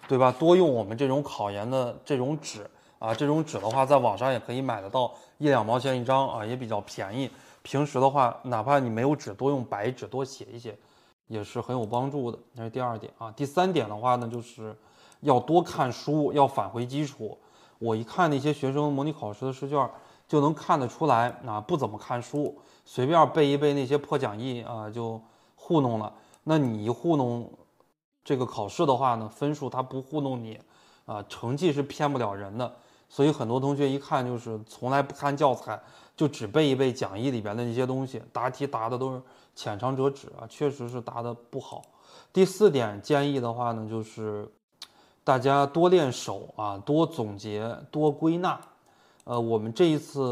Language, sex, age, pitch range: Chinese, male, 20-39, 115-140 Hz